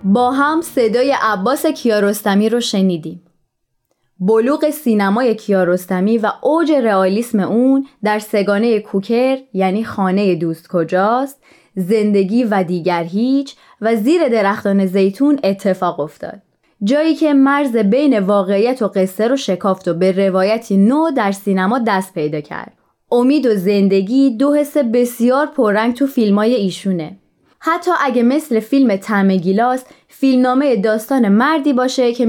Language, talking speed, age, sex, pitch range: Persian, 130 wpm, 20-39, female, 195-255 Hz